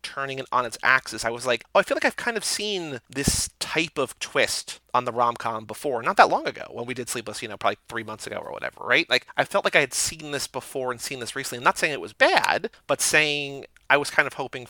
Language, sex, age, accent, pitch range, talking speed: English, male, 30-49, American, 120-165 Hz, 275 wpm